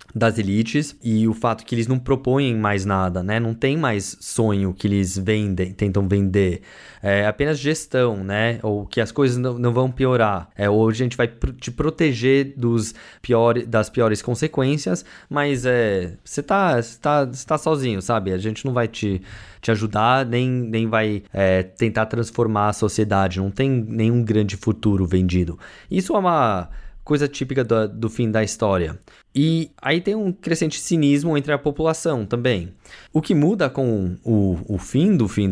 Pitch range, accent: 100-130 Hz, Brazilian